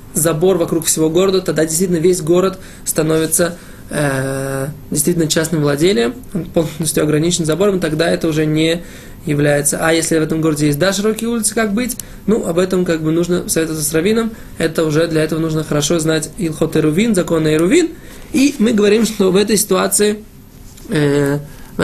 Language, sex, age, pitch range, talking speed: Russian, male, 20-39, 150-180 Hz, 170 wpm